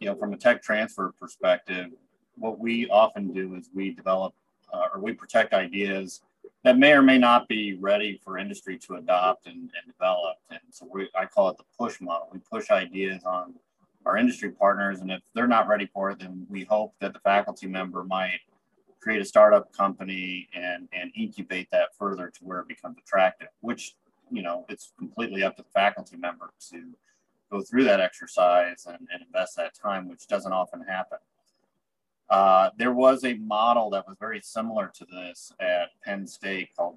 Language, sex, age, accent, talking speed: English, male, 30-49, American, 190 wpm